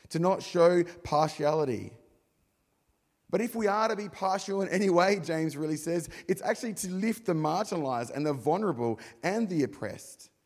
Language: English